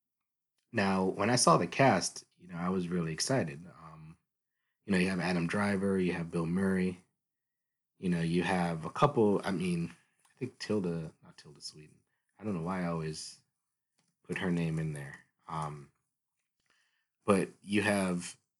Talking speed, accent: 170 wpm, American